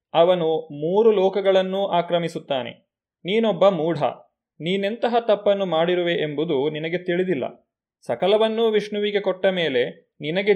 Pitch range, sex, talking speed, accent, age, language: 155-200 Hz, male, 95 wpm, native, 30-49, Kannada